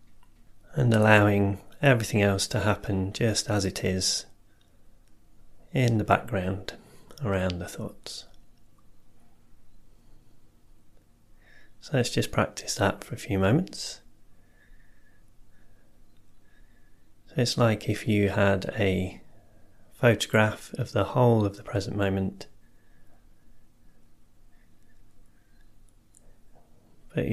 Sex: male